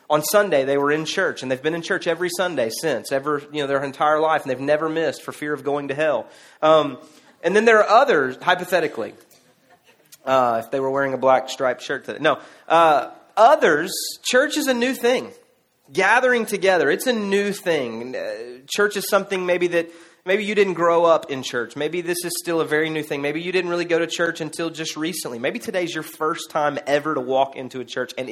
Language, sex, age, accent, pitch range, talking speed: English, male, 30-49, American, 145-195 Hz, 220 wpm